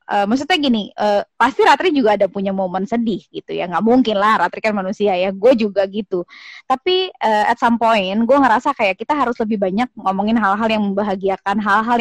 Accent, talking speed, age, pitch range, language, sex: native, 200 wpm, 20-39, 200-255 Hz, Indonesian, female